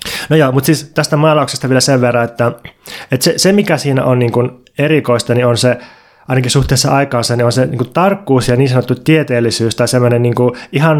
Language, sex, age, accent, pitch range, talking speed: Finnish, male, 20-39, native, 120-150 Hz, 195 wpm